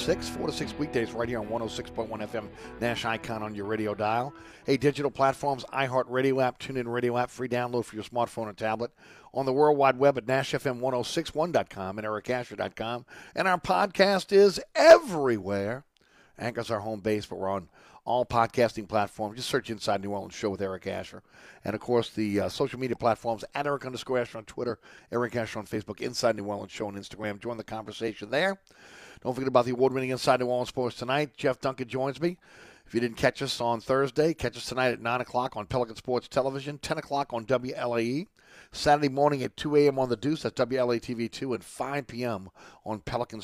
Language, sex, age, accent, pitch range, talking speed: English, male, 50-69, American, 115-135 Hz, 200 wpm